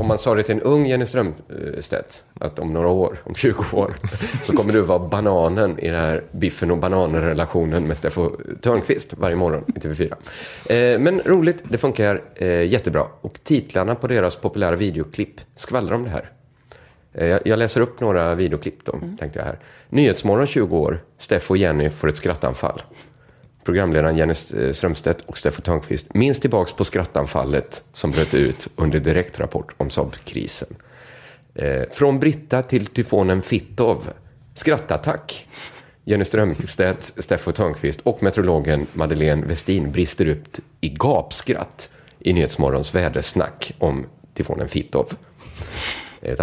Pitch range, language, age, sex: 80-110 Hz, Swedish, 30-49, male